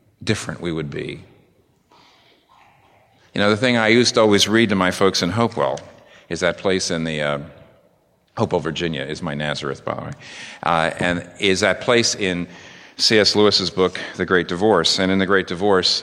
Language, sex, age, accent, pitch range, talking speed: English, male, 50-69, American, 95-120 Hz, 185 wpm